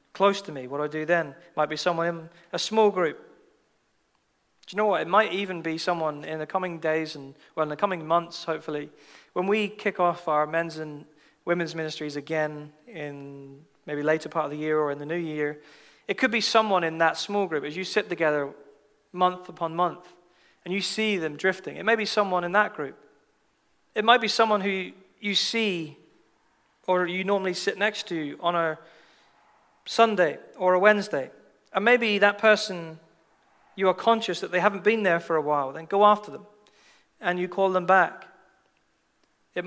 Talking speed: 195 wpm